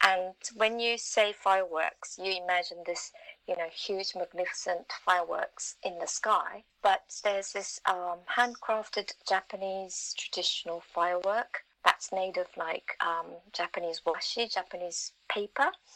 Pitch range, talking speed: 185-235 Hz, 120 wpm